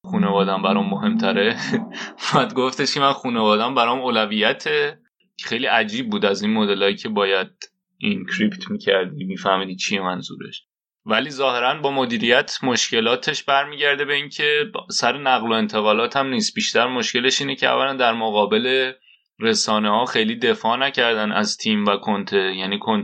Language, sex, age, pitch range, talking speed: Persian, male, 20-39, 105-145 Hz, 150 wpm